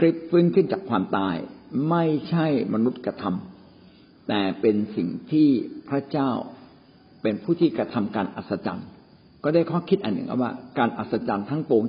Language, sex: Thai, male